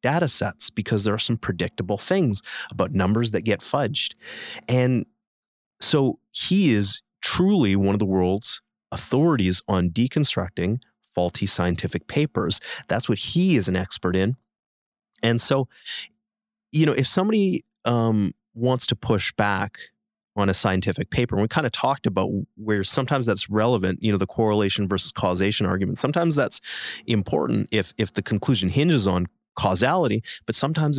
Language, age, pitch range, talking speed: English, 30-49, 100-135 Hz, 155 wpm